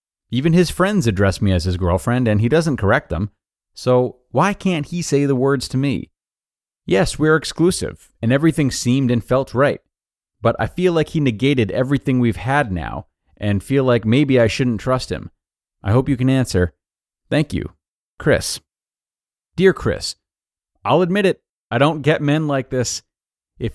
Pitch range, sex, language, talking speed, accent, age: 95-130 Hz, male, English, 175 wpm, American, 30-49